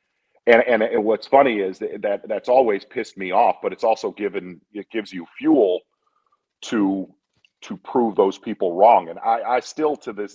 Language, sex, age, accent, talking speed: English, male, 40-59, American, 185 wpm